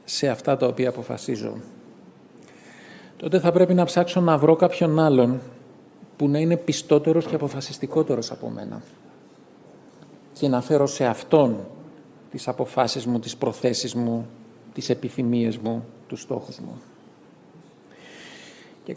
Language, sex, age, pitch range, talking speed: Greek, male, 40-59, 130-180 Hz, 125 wpm